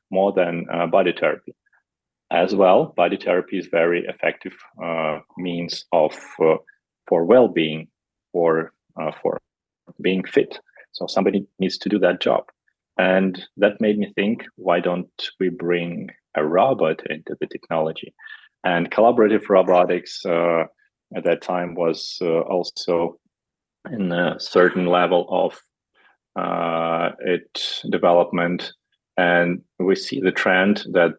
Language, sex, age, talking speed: English, male, 30-49, 130 wpm